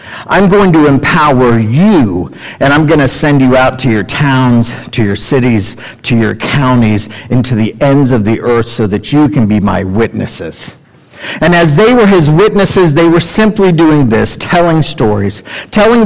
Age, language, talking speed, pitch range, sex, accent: 50-69, English, 180 wpm, 130-185 Hz, male, American